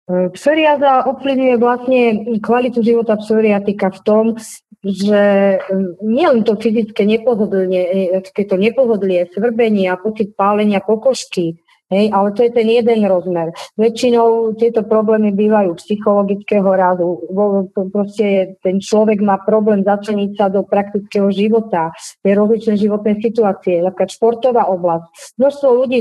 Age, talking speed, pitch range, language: 40-59, 120 wpm, 195-230 Hz, Slovak